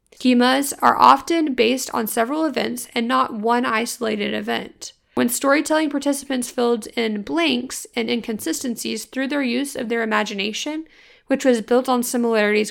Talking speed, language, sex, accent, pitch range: 145 wpm, English, female, American, 220-255 Hz